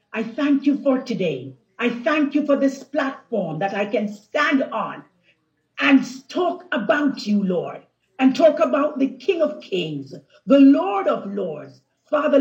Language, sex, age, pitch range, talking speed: English, female, 50-69, 205-285 Hz, 160 wpm